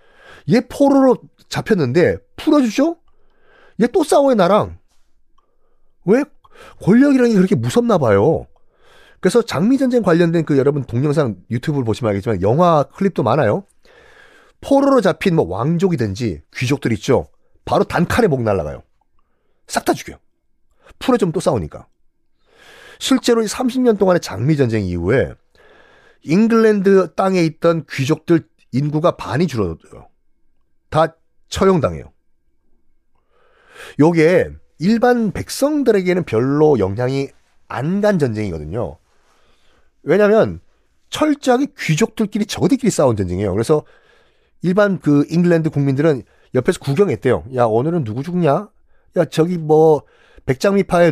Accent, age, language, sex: native, 40-59, Korean, male